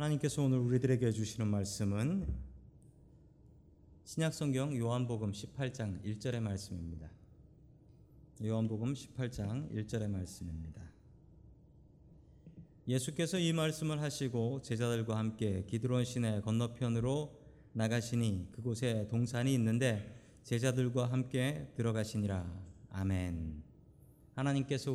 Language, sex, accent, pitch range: Korean, male, native, 105-130 Hz